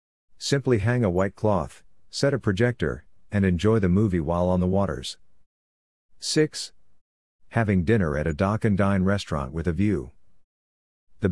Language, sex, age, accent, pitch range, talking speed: English, male, 50-69, American, 85-105 Hz, 145 wpm